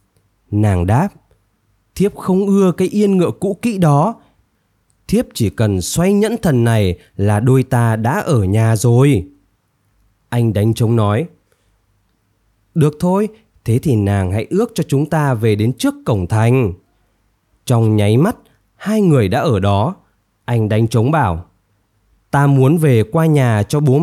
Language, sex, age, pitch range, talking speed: Vietnamese, male, 20-39, 105-155 Hz, 155 wpm